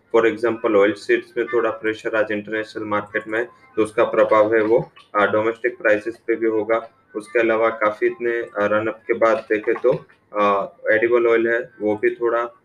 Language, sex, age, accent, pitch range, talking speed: English, male, 20-39, Indian, 110-120 Hz, 195 wpm